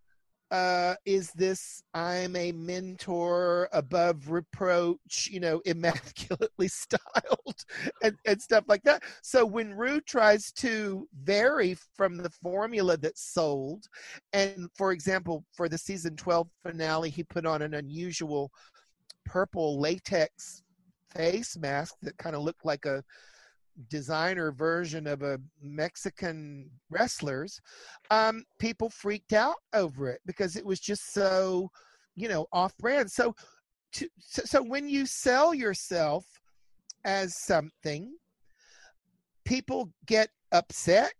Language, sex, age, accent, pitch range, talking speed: English, male, 50-69, American, 165-215 Hz, 120 wpm